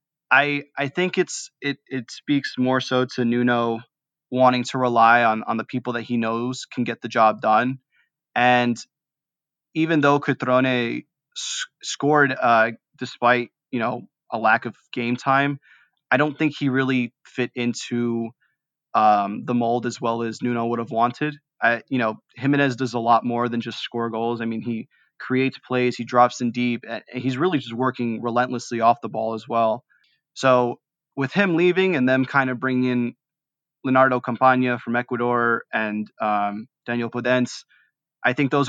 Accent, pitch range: American, 120-135 Hz